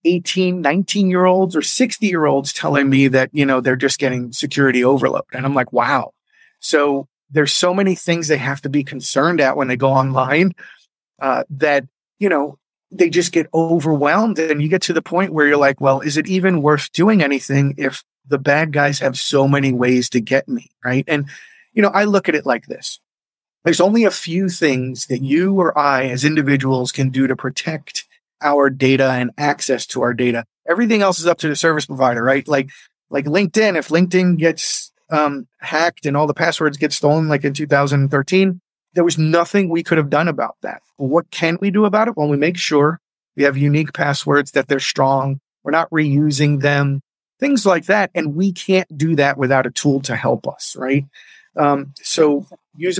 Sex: male